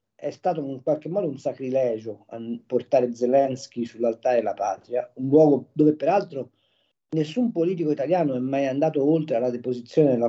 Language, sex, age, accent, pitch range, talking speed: Italian, male, 40-59, native, 125-155 Hz, 150 wpm